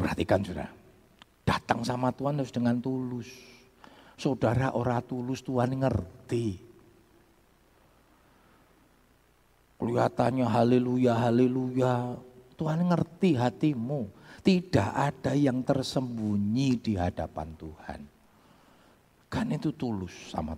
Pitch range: 105-160 Hz